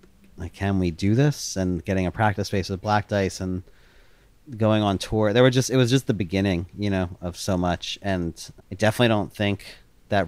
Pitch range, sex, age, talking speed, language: 90-105 Hz, male, 30-49, 210 wpm, English